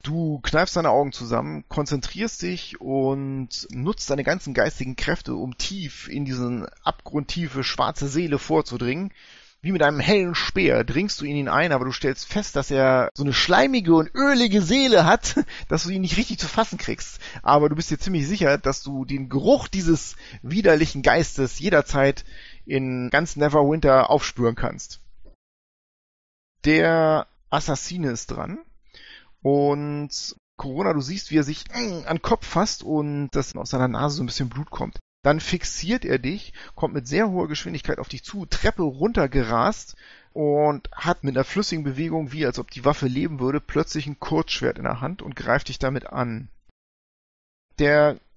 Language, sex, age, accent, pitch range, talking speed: German, male, 30-49, German, 135-170 Hz, 165 wpm